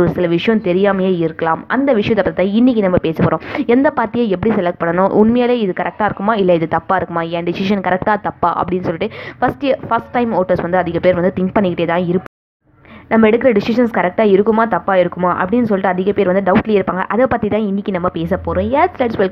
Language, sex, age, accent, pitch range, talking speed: Tamil, female, 20-39, native, 170-220 Hz, 30 wpm